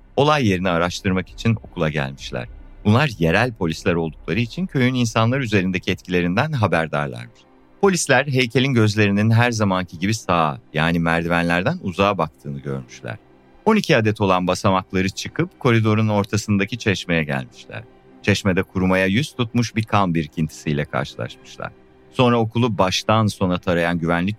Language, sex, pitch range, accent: Turkish, male, 80-105 Hz, native